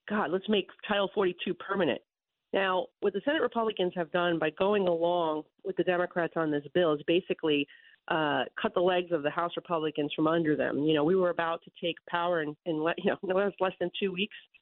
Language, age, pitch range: English, 40-59, 170-205 Hz